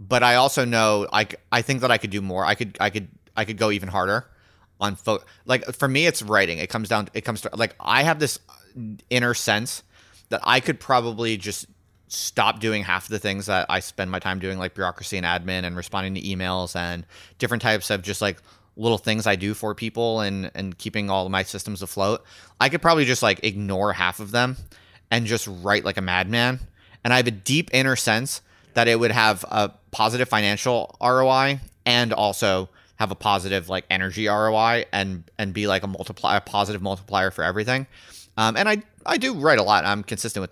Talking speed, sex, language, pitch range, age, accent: 215 wpm, male, English, 95-115 Hz, 30-49, American